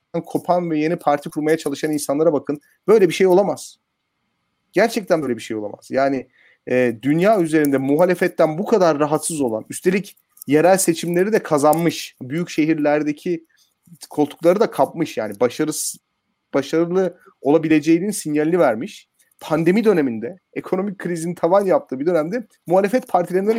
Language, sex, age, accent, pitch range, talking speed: Turkish, male, 40-59, native, 135-175 Hz, 130 wpm